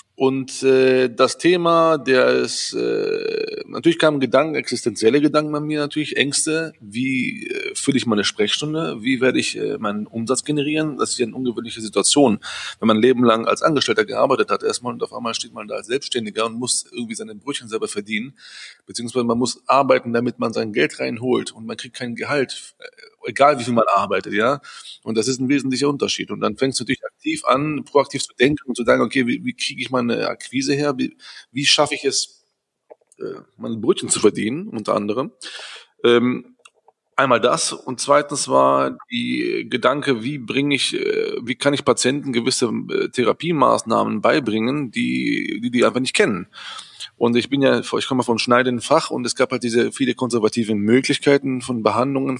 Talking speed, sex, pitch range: 185 wpm, male, 120-170 Hz